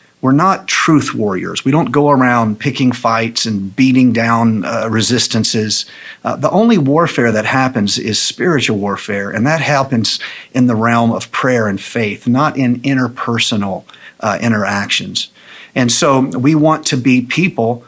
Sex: male